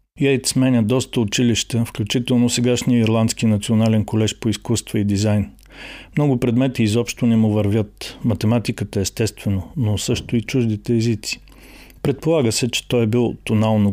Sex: male